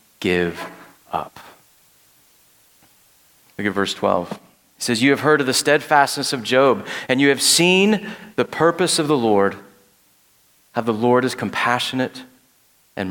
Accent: American